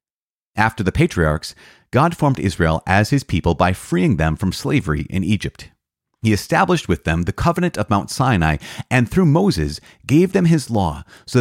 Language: English